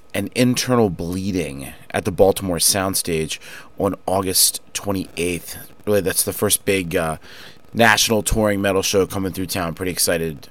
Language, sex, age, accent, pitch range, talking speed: English, male, 30-49, American, 90-125 Hz, 150 wpm